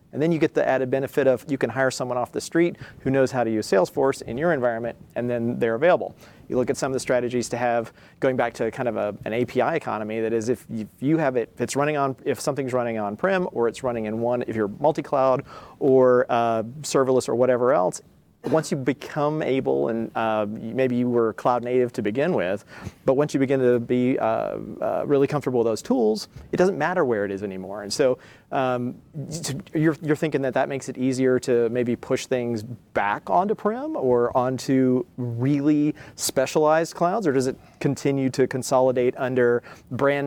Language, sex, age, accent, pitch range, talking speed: English, male, 40-59, American, 120-140 Hz, 205 wpm